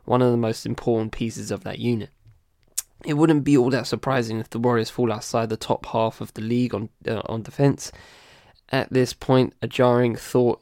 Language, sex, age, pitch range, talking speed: English, male, 10-29, 110-125 Hz, 205 wpm